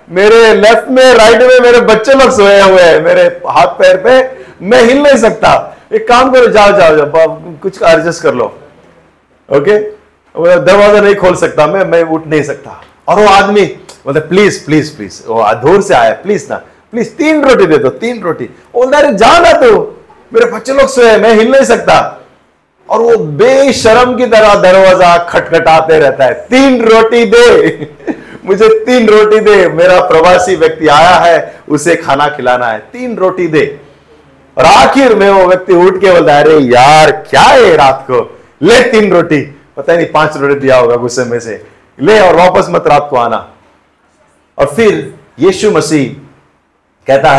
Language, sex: Hindi, male